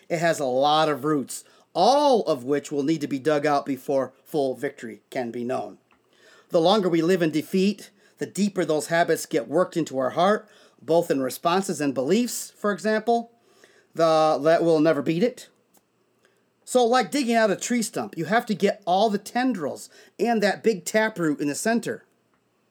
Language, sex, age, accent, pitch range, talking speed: English, male, 40-59, American, 155-220 Hz, 185 wpm